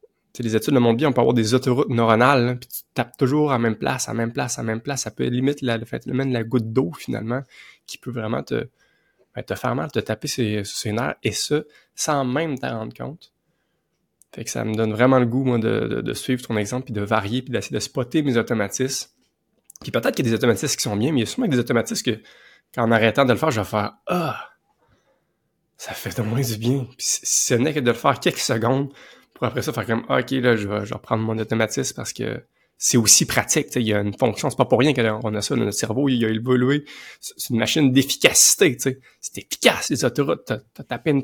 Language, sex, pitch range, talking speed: French, male, 110-130 Hz, 250 wpm